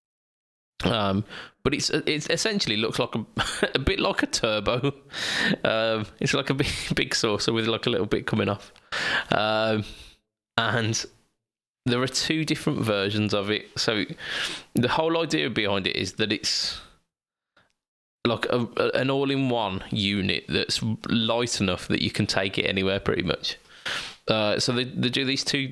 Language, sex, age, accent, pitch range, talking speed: English, male, 20-39, British, 100-120 Hz, 155 wpm